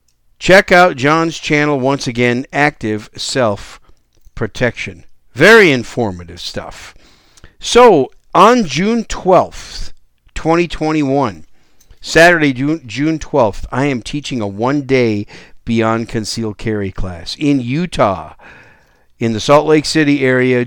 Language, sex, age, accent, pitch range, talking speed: English, male, 50-69, American, 115-150 Hz, 105 wpm